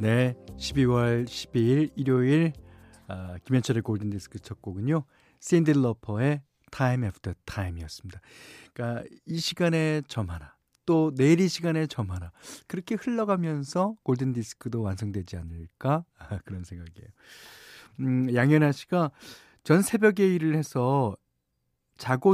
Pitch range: 105-155 Hz